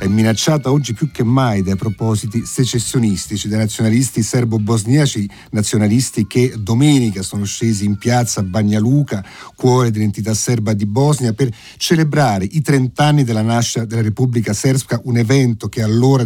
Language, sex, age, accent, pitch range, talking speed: Italian, male, 40-59, native, 110-135 Hz, 150 wpm